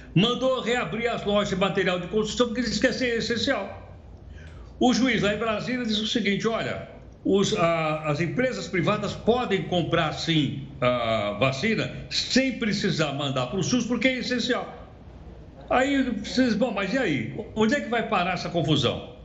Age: 60-79